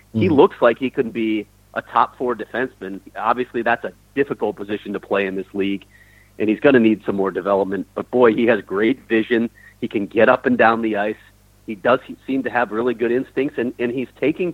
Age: 40-59